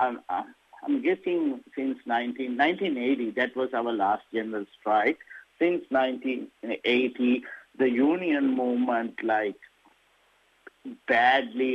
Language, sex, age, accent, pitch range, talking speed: English, male, 50-69, Indian, 120-135 Hz, 95 wpm